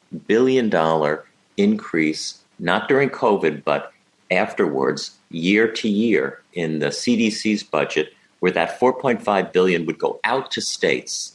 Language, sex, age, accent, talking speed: English, male, 50-69, American, 125 wpm